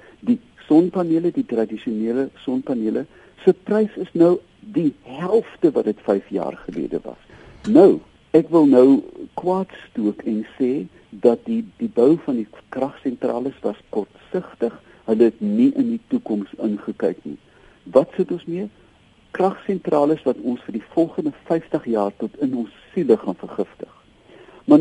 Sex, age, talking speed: male, 60-79, 150 wpm